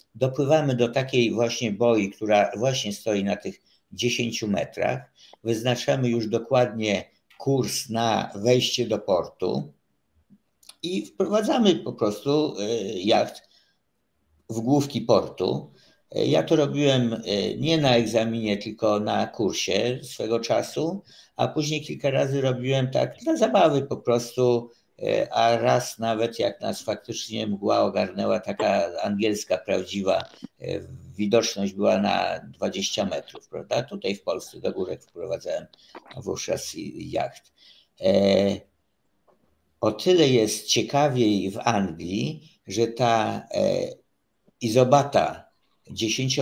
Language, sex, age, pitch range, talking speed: Polish, male, 50-69, 105-130 Hz, 110 wpm